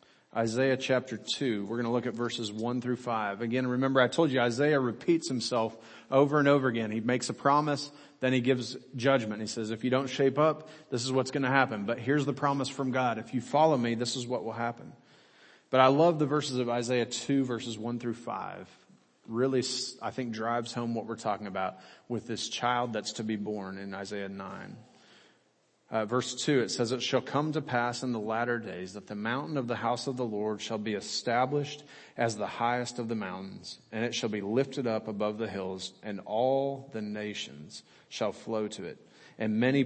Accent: American